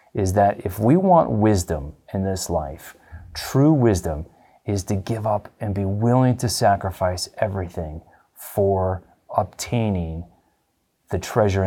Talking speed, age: 130 wpm, 30-49